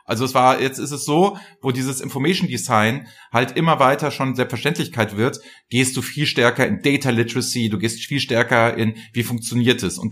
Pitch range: 115-160 Hz